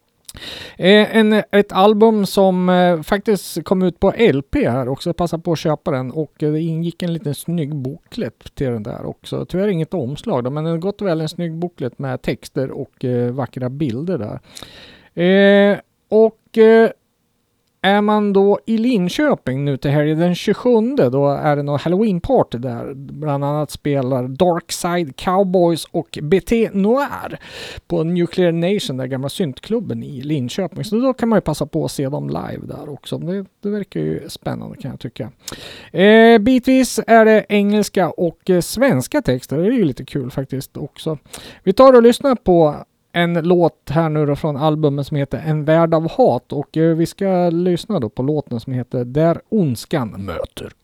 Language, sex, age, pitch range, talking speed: Swedish, male, 40-59, 140-195 Hz, 175 wpm